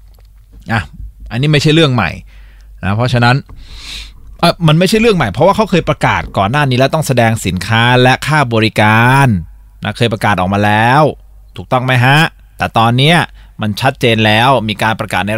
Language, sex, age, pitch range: Thai, male, 20-39, 110-145 Hz